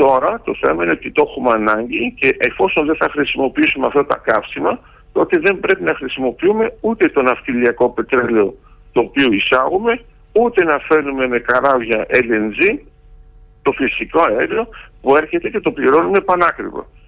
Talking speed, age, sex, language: 150 wpm, 60-79, male, Greek